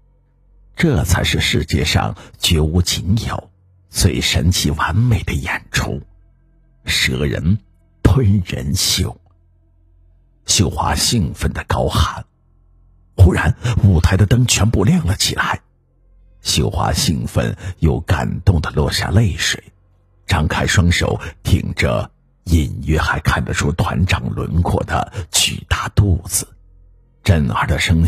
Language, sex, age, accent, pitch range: Chinese, male, 50-69, native, 85-105 Hz